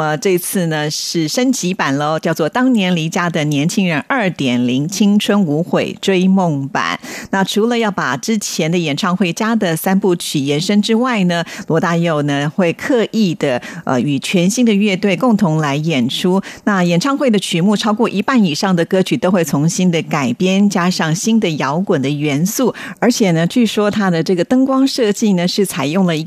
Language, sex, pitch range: Chinese, female, 160-210 Hz